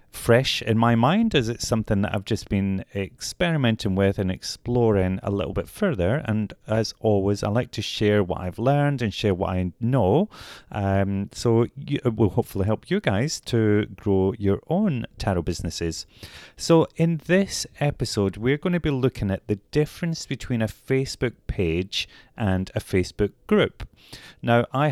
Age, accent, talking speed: 30-49, British, 170 wpm